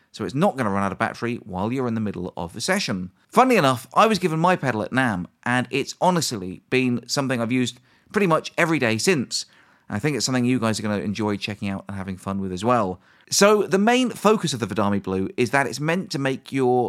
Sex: male